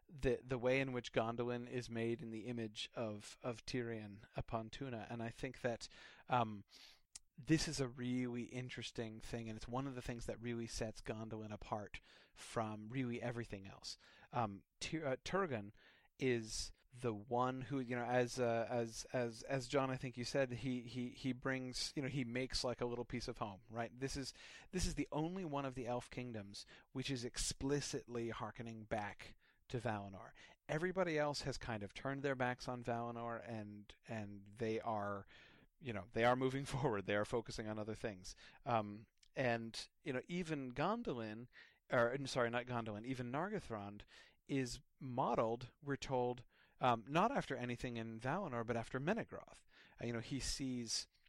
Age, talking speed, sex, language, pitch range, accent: 30-49, 175 wpm, male, English, 110-130 Hz, American